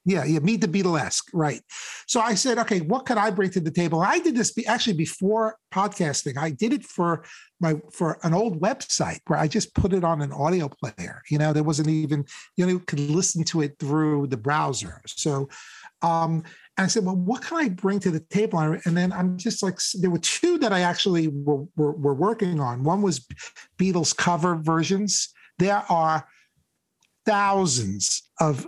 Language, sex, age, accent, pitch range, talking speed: English, male, 50-69, American, 155-195 Hz, 195 wpm